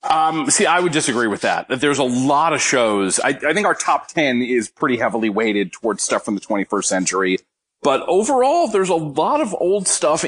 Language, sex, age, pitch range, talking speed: English, male, 30-49, 115-150 Hz, 215 wpm